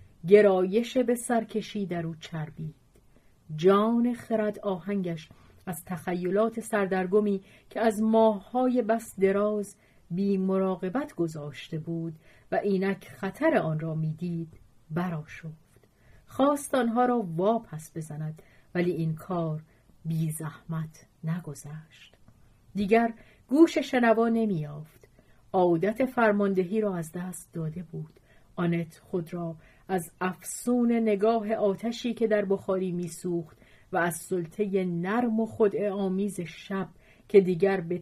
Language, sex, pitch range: Persian, female, 160-210 Hz